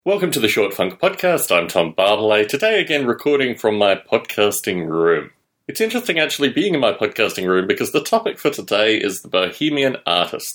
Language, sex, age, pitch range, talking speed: English, male, 30-49, 120-165 Hz, 190 wpm